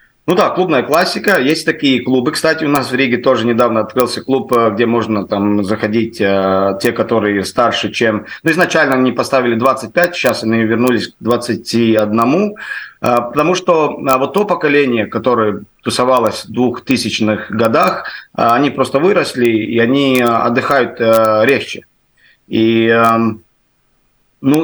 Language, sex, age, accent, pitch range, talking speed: Russian, male, 30-49, native, 115-140 Hz, 130 wpm